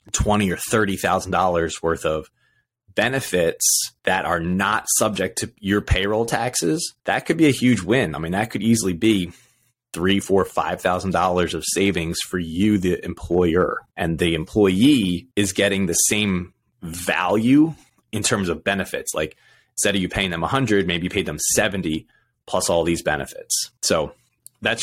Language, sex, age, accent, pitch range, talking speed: English, male, 30-49, American, 90-120 Hz, 170 wpm